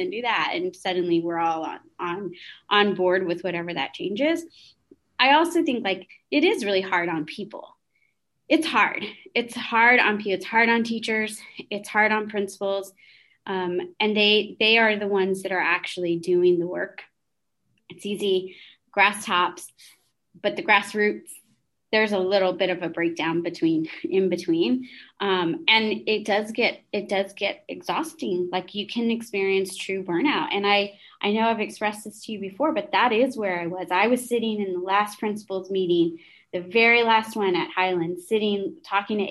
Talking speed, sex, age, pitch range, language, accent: 180 wpm, female, 20-39, 185-225 Hz, English, American